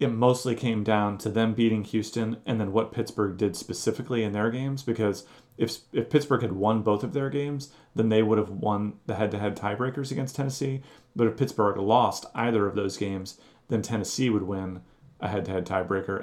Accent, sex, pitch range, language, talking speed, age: American, male, 100-120 Hz, English, 190 wpm, 30-49